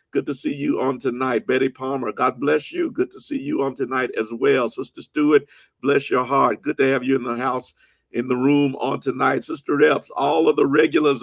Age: 50-69